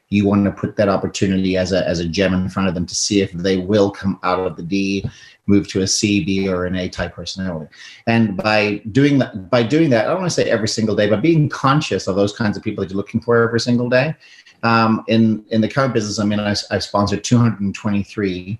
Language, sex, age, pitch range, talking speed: English, male, 30-49, 95-115 Hz, 250 wpm